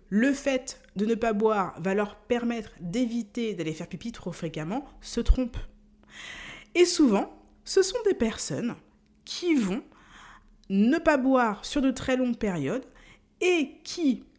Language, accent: French, French